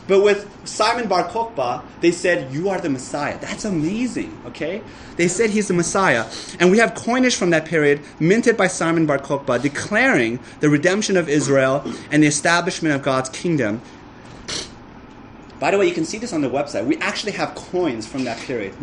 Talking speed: 190 wpm